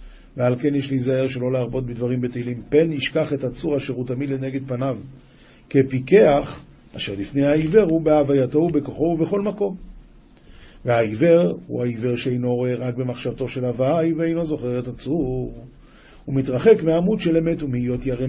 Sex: male